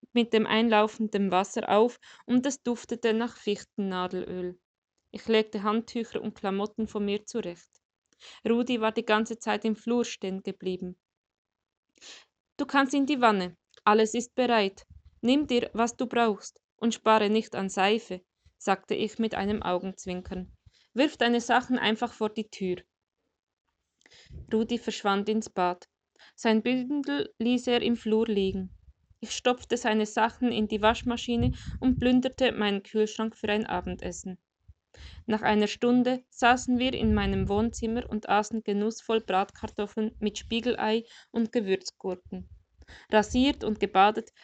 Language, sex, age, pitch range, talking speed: German, female, 20-39, 200-235 Hz, 135 wpm